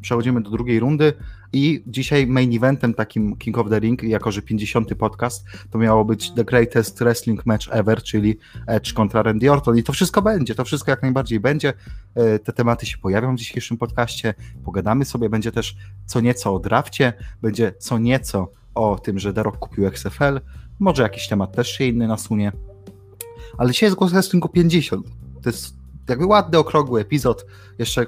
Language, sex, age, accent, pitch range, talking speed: Polish, male, 30-49, native, 100-130 Hz, 175 wpm